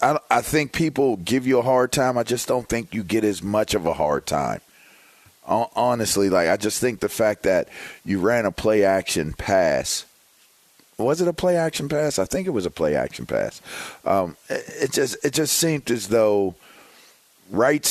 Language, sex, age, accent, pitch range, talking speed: English, male, 40-59, American, 100-130 Hz, 180 wpm